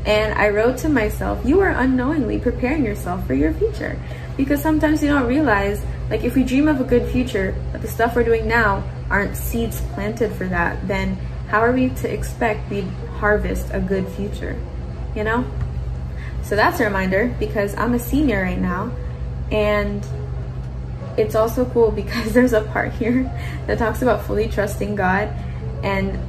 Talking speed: 175 wpm